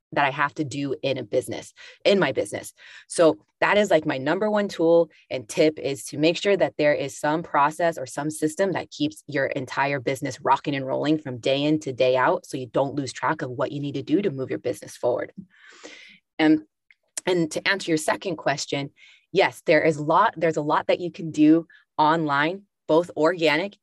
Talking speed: 205 wpm